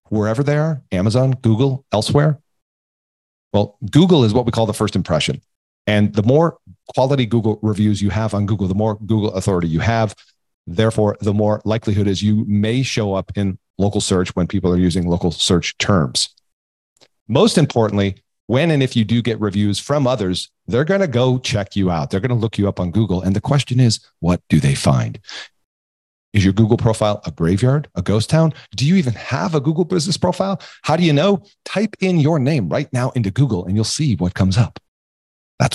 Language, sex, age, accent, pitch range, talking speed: English, male, 40-59, American, 100-135 Hz, 200 wpm